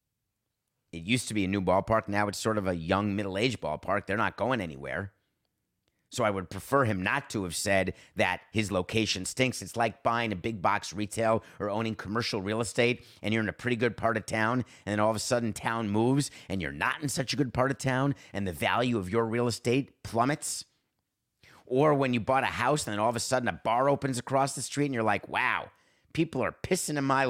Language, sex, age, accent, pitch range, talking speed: English, male, 30-49, American, 95-125 Hz, 235 wpm